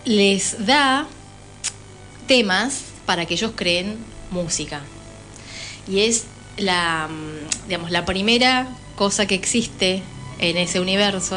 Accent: Argentinian